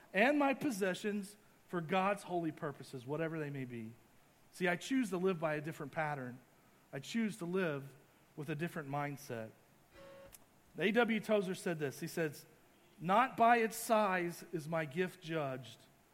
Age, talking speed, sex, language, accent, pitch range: 40-59, 155 wpm, male, English, American, 145-195 Hz